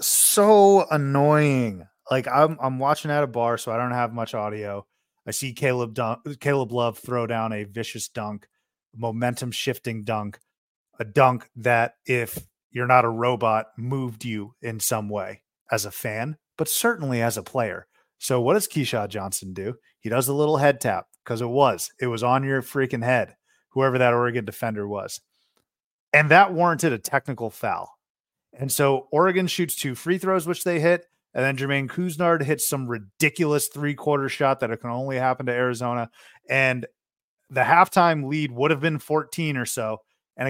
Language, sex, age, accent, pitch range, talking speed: English, male, 30-49, American, 120-155 Hz, 175 wpm